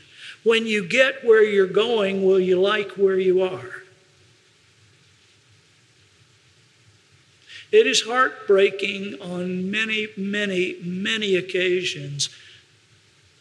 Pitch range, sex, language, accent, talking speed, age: 185-240 Hz, male, English, American, 90 wpm, 50-69